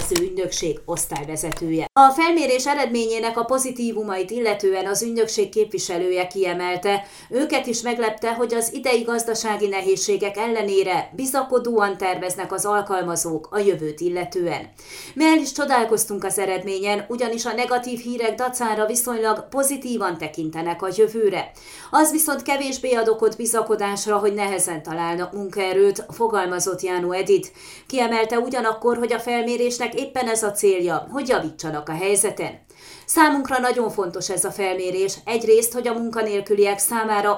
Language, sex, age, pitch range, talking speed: Hungarian, female, 30-49, 190-240 Hz, 125 wpm